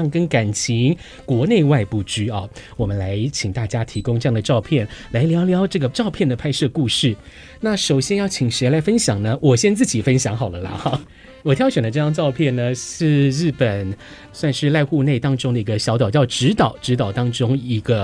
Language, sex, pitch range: Chinese, male, 110-150 Hz